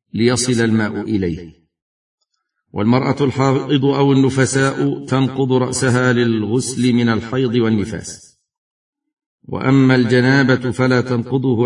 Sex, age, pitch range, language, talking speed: male, 50-69, 115-135 Hz, Arabic, 90 wpm